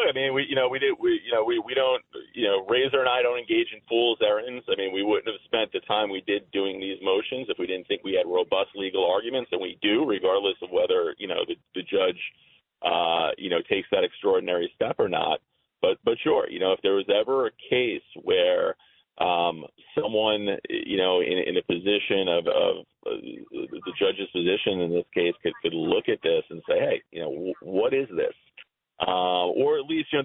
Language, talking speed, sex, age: English, 225 wpm, male, 40-59